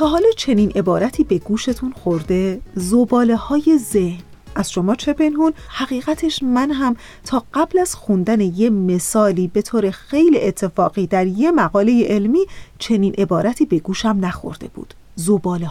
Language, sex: Persian, female